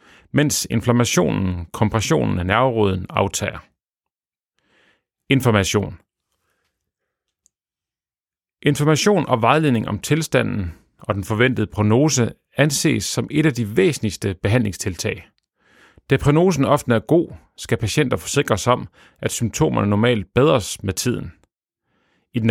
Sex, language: male, Danish